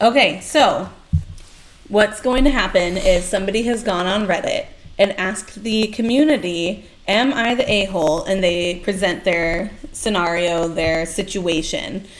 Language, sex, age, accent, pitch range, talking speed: English, female, 30-49, American, 180-230 Hz, 135 wpm